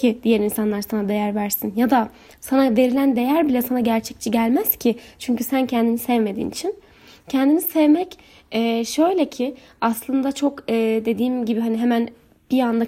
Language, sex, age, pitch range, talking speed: Turkish, female, 10-29, 230-280 Hz, 150 wpm